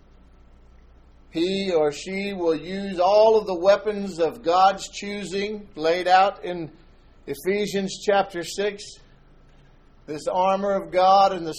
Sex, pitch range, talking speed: male, 150-195 Hz, 125 wpm